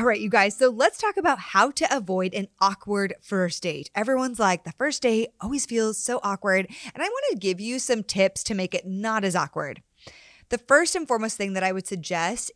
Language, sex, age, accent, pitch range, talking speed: English, female, 20-39, American, 190-255 Hz, 220 wpm